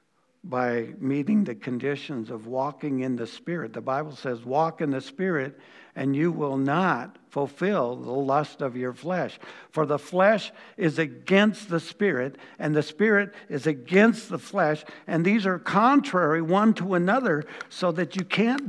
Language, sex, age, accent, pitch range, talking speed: English, male, 60-79, American, 150-210 Hz, 165 wpm